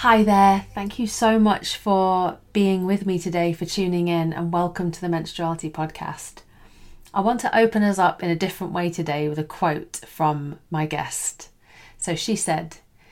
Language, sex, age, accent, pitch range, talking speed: English, female, 30-49, British, 155-185 Hz, 185 wpm